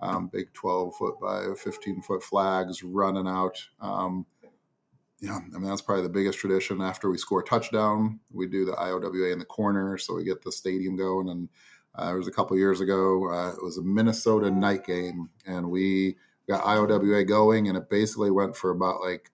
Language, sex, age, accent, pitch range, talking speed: English, male, 30-49, American, 90-100 Hz, 190 wpm